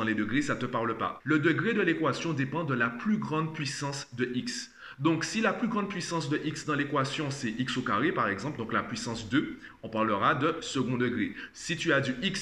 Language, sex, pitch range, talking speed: French, male, 120-155 Hz, 230 wpm